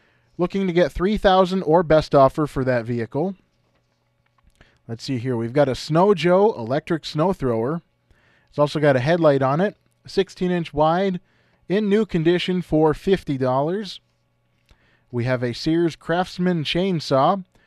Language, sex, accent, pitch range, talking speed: English, male, American, 130-180 Hz, 150 wpm